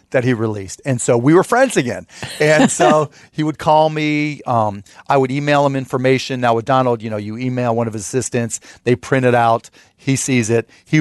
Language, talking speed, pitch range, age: English, 220 wpm, 110-130 Hz, 40-59